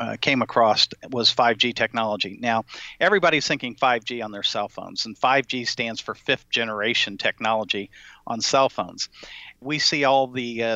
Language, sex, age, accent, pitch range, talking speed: English, male, 50-69, American, 120-145 Hz, 155 wpm